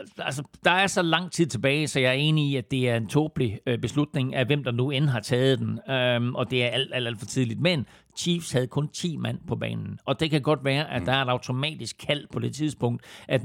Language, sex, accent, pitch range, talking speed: Danish, male, native, 125-145 Hz, 260 wpm